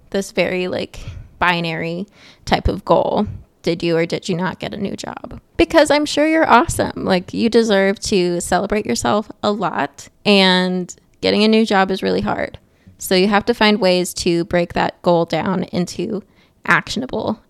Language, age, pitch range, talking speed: English, 20-39, 175-210 Hz, 175 wpm